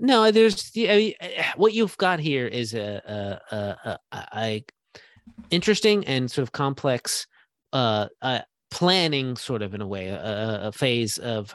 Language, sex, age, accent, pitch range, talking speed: English, male, 30-49, American, 105-145 Hz, 165 wpm